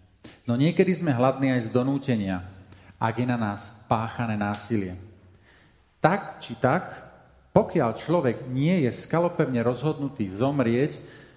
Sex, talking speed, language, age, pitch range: male, 120 wpm, Slovak, 40-59, 110-145 Hz